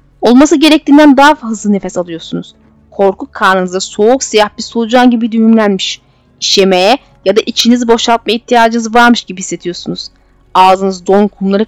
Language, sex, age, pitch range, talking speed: Turkish, female, 30-49, 185-265 Hz, 135 wpm